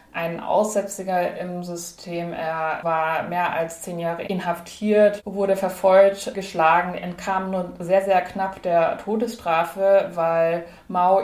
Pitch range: 175-195 Hz